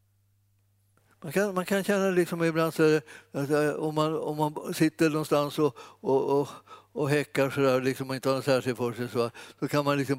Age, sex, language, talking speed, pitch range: 60-79, male, Swedish, 195 wpm, 110-135 Hz